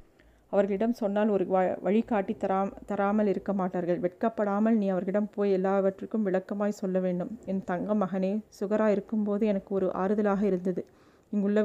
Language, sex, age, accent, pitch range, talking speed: Tamil, female, 30-49, native, 195-220 Hz, 125 wpm